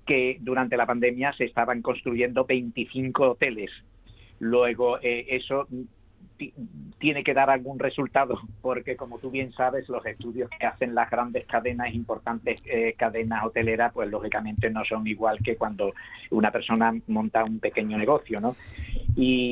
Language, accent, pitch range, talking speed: Spanish, Spanish, 115-125 Hz, 150 wpm